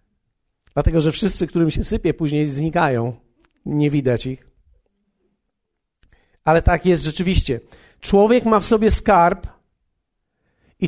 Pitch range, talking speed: 135-210 Hz, 115 wpm